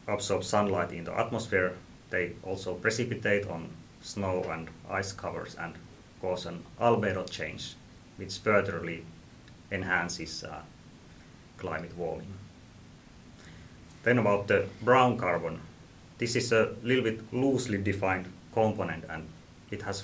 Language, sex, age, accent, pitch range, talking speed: Finnish, male, 30-49, native, 85-110 Hz, 120 wpm